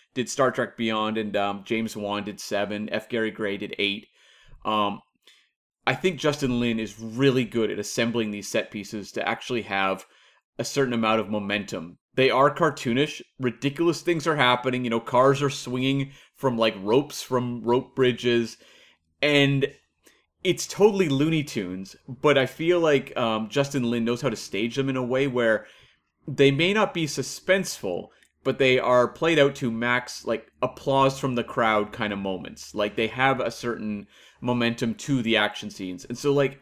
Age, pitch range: 30-49, 110-140 Hz